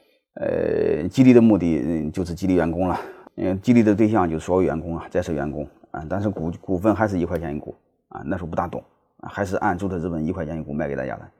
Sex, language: male, Chinese